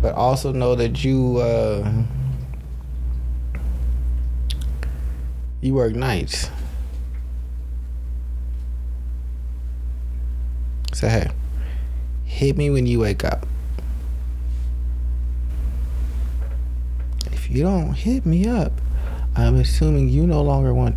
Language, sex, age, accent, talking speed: English, male, 30-49, American, 85 wpm